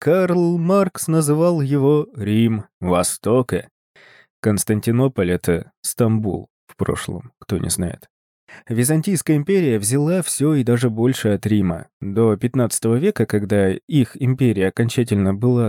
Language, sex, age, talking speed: Russian, male, 20-39, 120 wpm